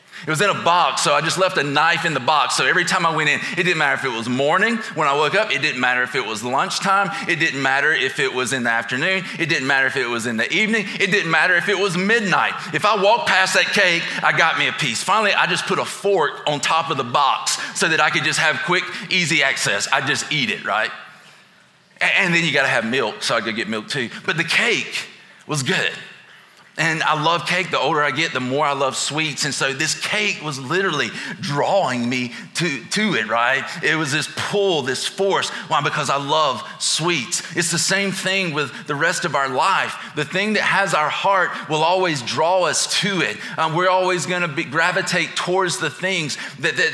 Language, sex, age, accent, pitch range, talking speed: English, male, 30-49, American, 150-190 Hz, 240 wpm